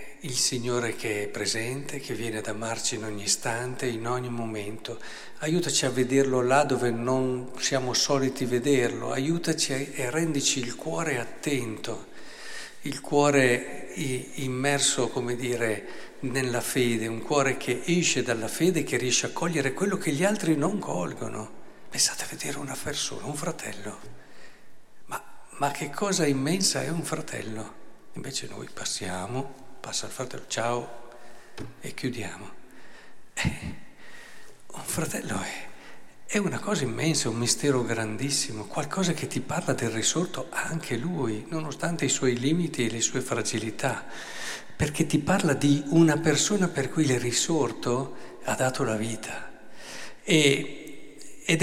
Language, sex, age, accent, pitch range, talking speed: Italian, male, 60-79, native, 120-145 Hz, 135 wpm